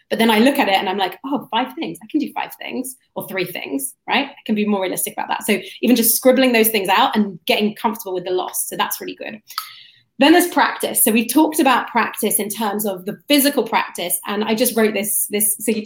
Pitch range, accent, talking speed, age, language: 190-240 Hz, British, 255 wpm, 30-49, English